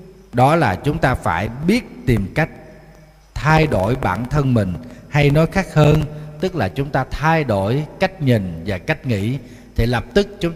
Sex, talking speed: male, 180 wpm